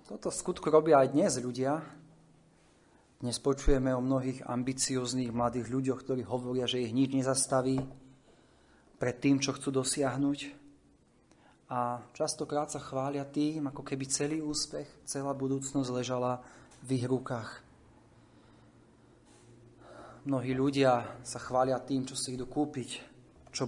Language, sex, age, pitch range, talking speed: Slovak, male, 30-49, 125-145 Hz, 125 wpm